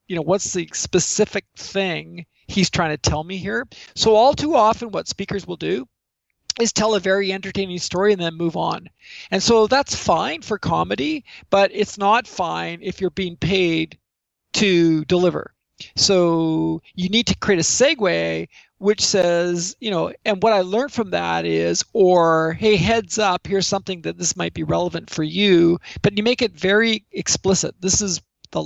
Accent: American